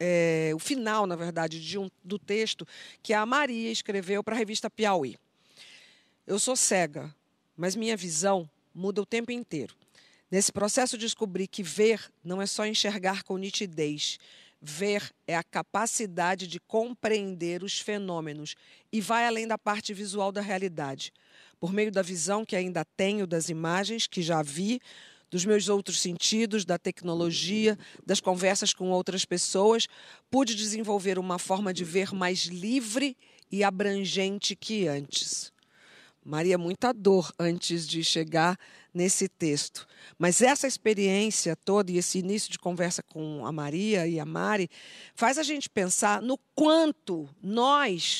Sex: female